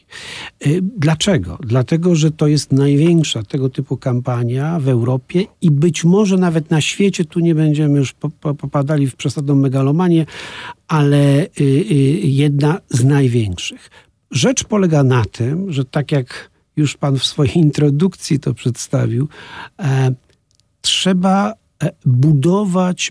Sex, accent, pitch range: male, native, 140-185 Hz